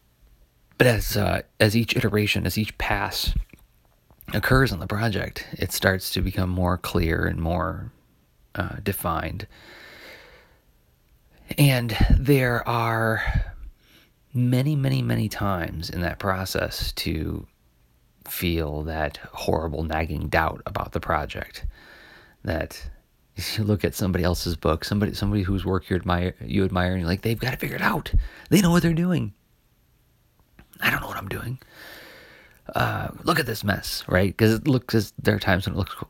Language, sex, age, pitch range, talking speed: English, male, 30-49, 85-110 Hz, 150 wpm